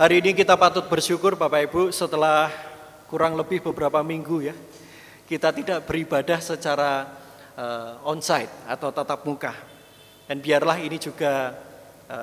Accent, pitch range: native, 155-240 Hz